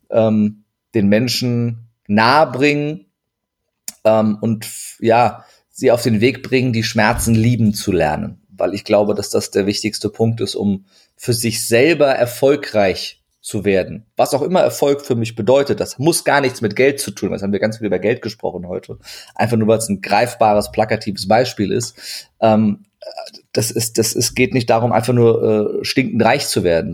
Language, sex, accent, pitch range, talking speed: German, male, German, 105-120 Hz, 185 wpm